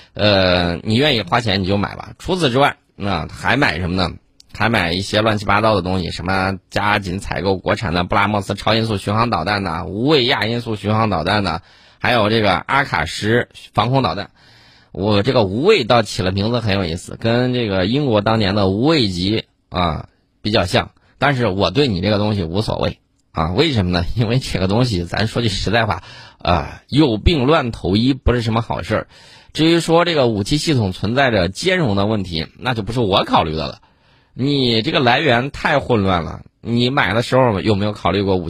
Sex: male